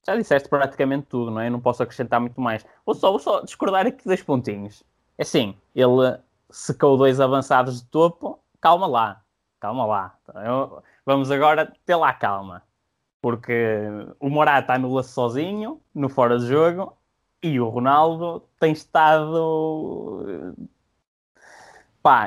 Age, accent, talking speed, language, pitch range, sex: 20-39, Brazilian, 150 wpm, Portuguese, 120-150 Hz, male